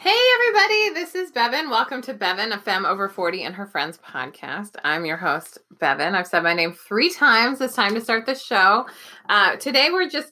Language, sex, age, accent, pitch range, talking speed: English, female, 20-39, American, 170-240 Hz, 210 wpm